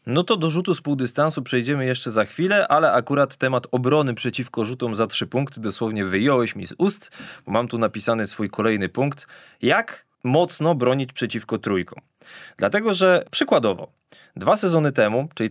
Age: 20-39